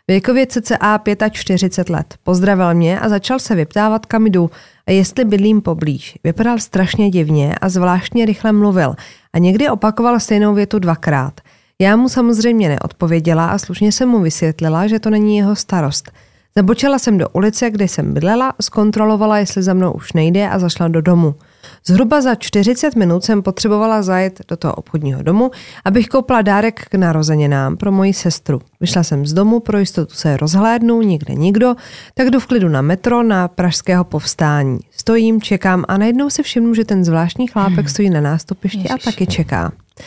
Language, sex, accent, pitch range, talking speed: Czech, female, native, 170-220 Hz, 170 wpm